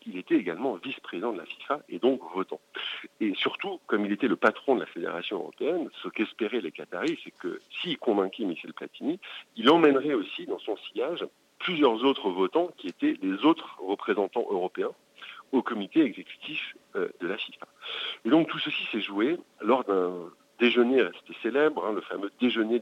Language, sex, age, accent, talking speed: French, male, 50-69, French, 180 wpm